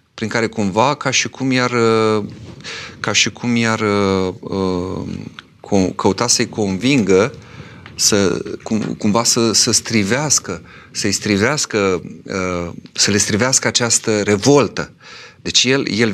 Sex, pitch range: male, 95-120 Hz